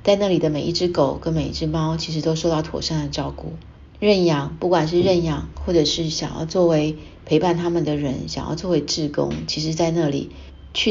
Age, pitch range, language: 30-49, 145-170 Hz, Chinese